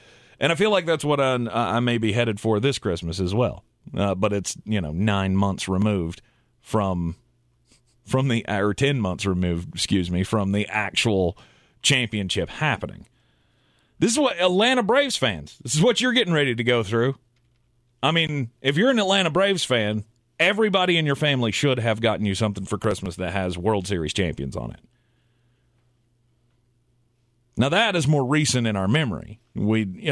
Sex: male